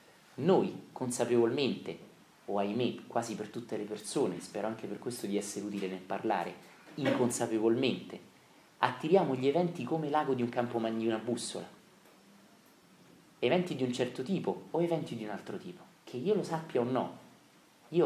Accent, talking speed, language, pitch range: native, 160 wpm, Italian, 110-155 Hz